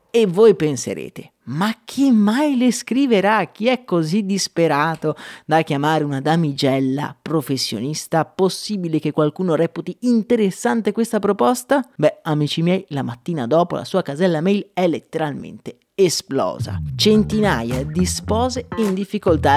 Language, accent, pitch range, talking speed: Italian, native, 150-200 Hz, 130 wpm